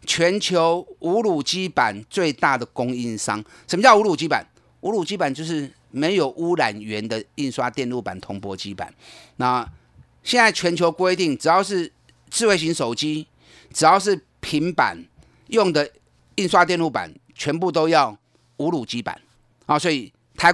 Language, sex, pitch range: Chinese, male, 130-185 Hz